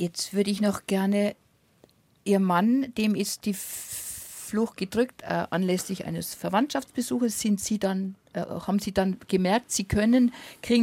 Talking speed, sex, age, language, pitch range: 150 wpm, female, 50-69, German, 185-220 Hz